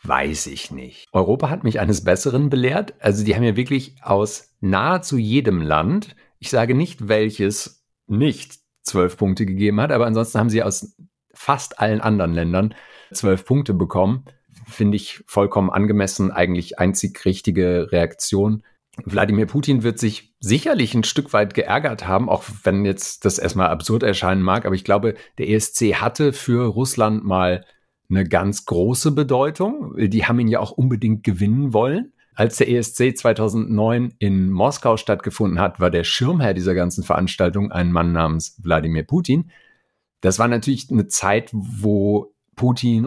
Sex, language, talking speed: male, German, 155 wpm